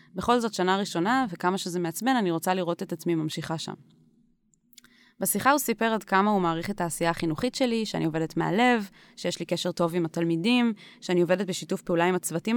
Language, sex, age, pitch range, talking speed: Hebrew, female, 20-39, 170-215 Hz, 190 wpm